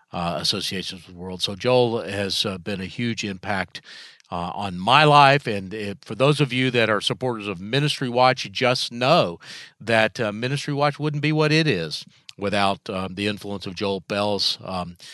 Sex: male